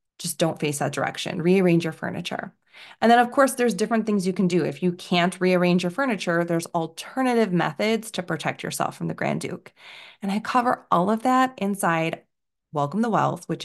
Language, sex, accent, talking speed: English, female, American, 200 wpm